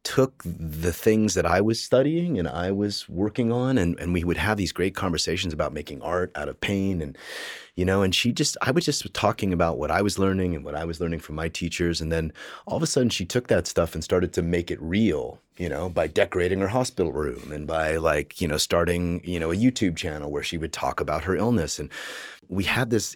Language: English